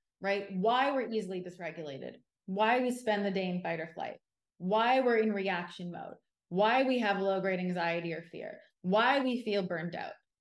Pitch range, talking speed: 190-230 Hz, 180 wpm